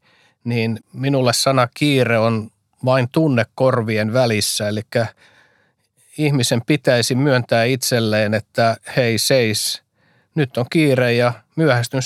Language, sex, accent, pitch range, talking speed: Finnish, male, native, 110-130 Hz, 105 wpm